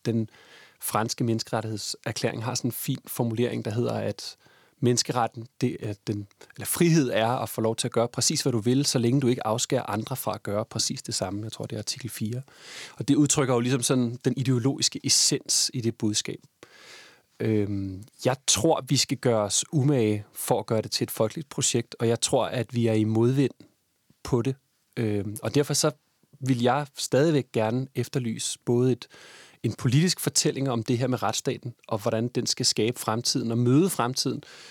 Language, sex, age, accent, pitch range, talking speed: Danish, male, 30-49, native, 115-135 Hz, 195 wpm